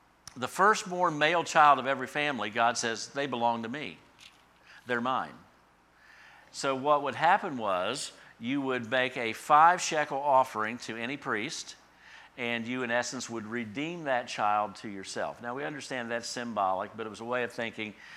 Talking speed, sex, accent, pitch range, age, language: 170 wpm, male, American, 110-150 Hz, 50-69, English